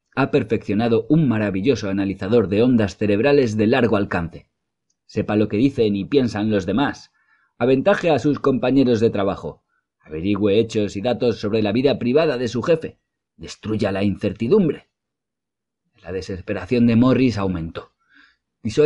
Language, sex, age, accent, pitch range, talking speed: Spanish, male, 30-49, Spanish, 95-120 Hz, 145 wpm